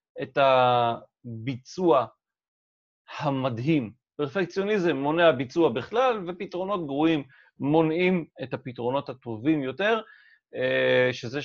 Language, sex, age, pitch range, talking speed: Hebrew, male, 30-49, 125-185 Hz, 80 wpm